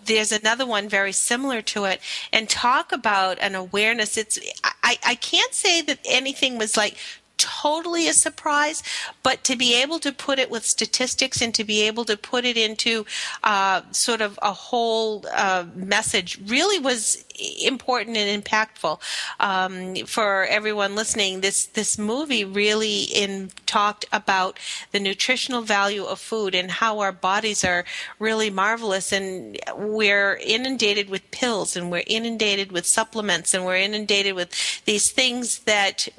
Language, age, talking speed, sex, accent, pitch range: English, 40-59, 160 wpm, female, American, 195-230 Hz